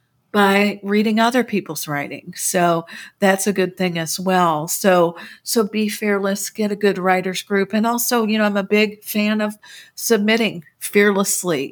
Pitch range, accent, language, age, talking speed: 180-210 Hz, American, English, 50-69, 165 wpm